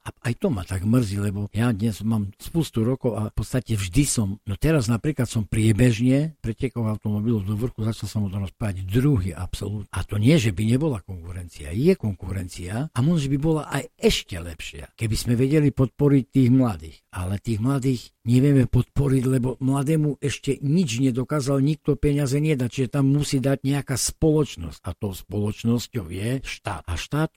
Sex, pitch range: male, 105-135 Hz